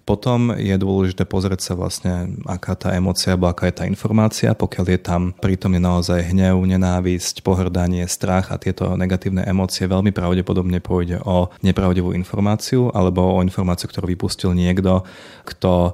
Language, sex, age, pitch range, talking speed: Slovak, male, 30-49, 90-100 Hz, 150 wpm